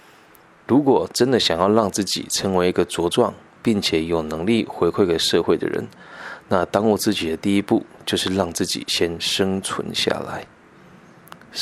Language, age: Chinese, 20-39